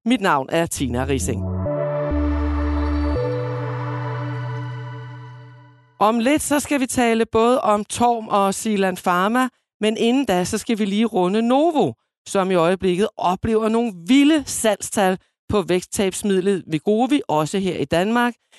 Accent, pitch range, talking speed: native, 160-230 Hz, 130 wpm